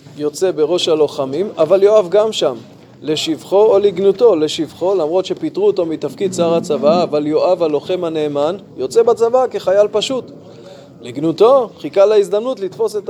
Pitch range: 175-245 Hz